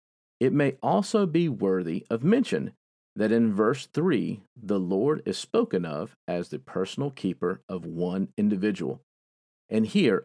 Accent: American